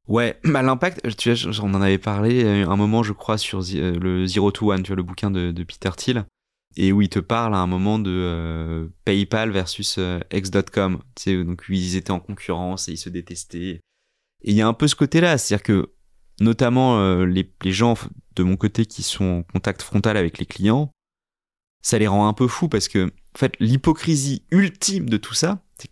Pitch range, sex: 95-120 Hz, male